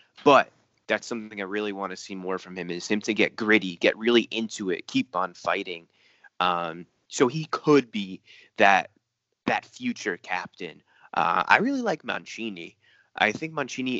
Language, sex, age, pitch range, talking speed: Persian, male, 20-39, 95-110 Hz, 170 wpm